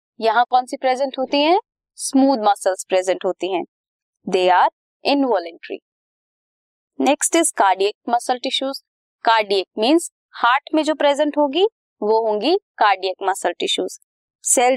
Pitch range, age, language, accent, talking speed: 225-305 Hz, 20-39, Hindi, native, 130 wpm